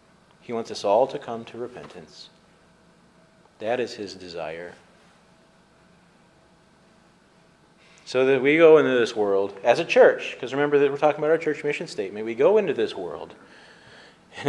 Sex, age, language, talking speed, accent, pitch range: male, 40-59, English, 155 wpm, American, 120-185 Hz